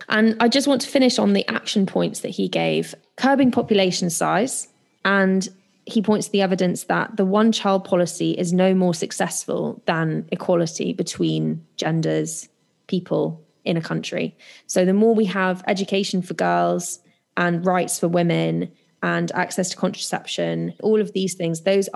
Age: 20-39